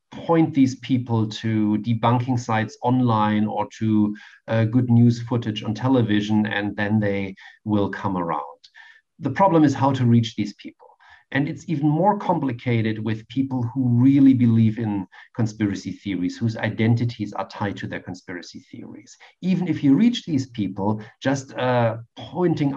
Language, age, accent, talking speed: English, 50-69, German, 155 wpm